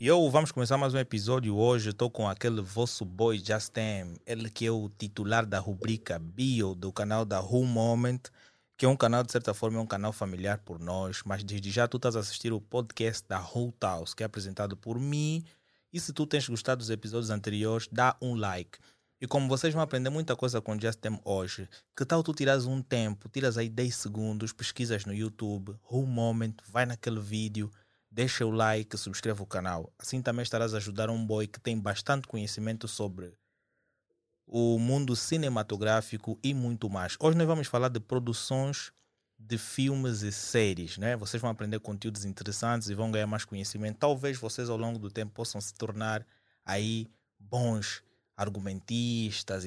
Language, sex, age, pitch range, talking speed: Portuguese, male, 20-39, 105-125 Hz, 185 wpm